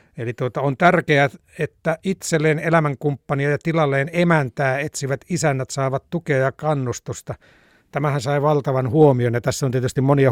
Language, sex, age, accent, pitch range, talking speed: Finnish, male, 60-79, native, 120-140 Hz, 145 wpm